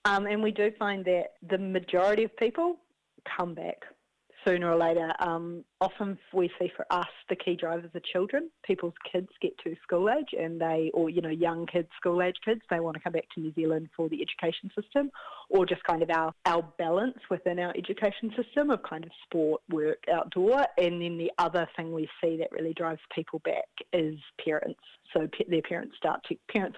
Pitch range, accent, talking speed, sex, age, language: 160-190 Hz, Australian, 205 wpm, female, 30-49, English